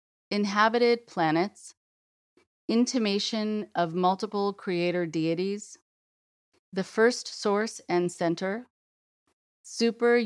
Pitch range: 170-205 Hz